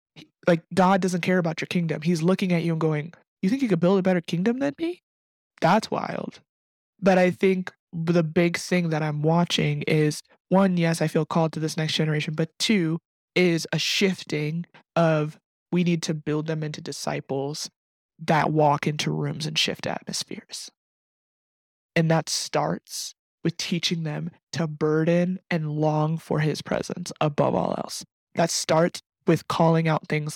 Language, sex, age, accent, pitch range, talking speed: English, male, 20-39, American, 155-180 Hz, 170 wpm